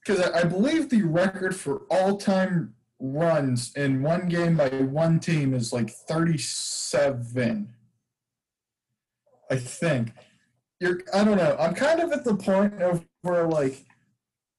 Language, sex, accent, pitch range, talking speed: English, male, American, 145-200 Hz, 140 wpm